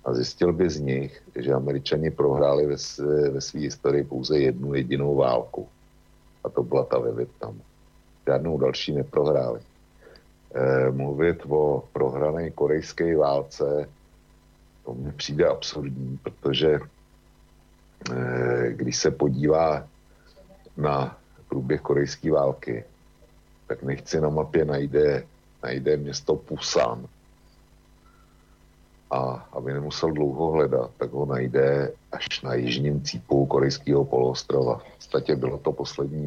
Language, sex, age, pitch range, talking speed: Slovak, male, 60-79, 65-75 Hz, 120 wpm